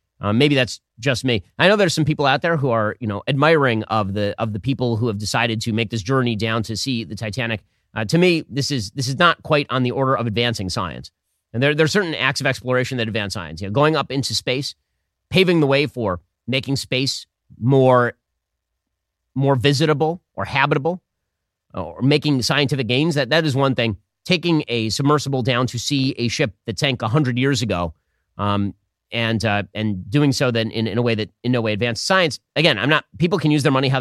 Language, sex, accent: English, male, American